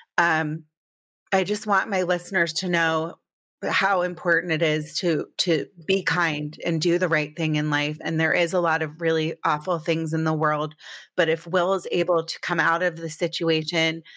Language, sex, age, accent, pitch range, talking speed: English, female, 30-49, American, 155-185 Hz, 195 wpm